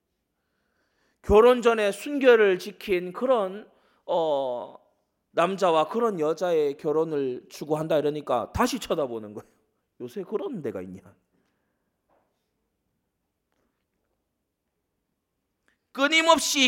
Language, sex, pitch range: Korean, male, 175-260 Hz